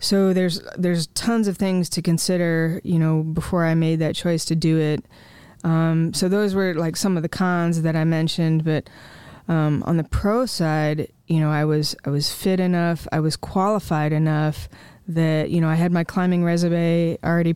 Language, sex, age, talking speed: English, female, 20-39, 195 wpm